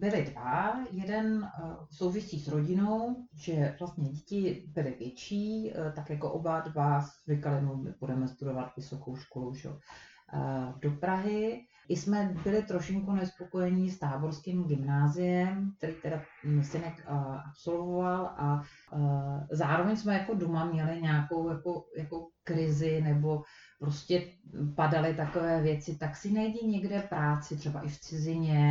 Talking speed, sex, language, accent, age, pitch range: 125 wpm, female, Czech, native, 30-49, 150-185 Hz